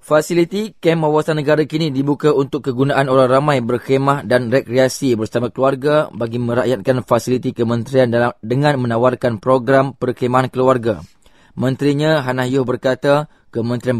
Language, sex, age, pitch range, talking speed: English, male, 20-39, 120-140 Hz, 130 wpm